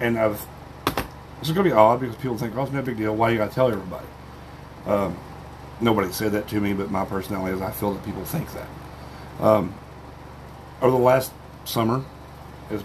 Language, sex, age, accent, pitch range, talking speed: English, male, 40-59, American, 95-110 Hz, 200 wpm